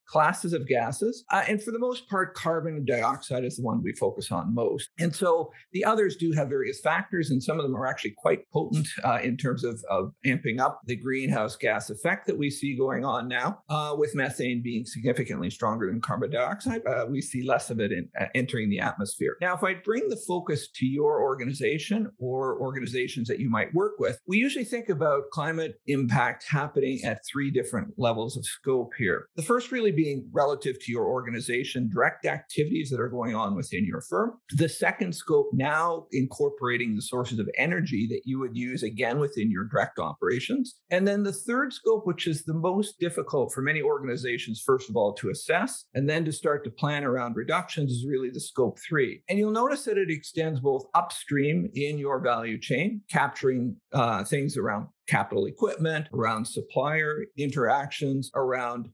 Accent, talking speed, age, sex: American, 190 wpm, 50-69, male